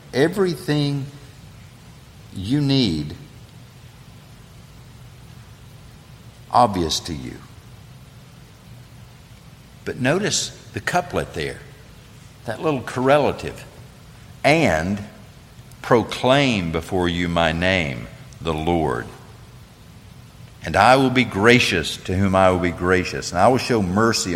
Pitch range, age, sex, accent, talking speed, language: 95-130 Hz, 60-79, male, American, 95 wpm, English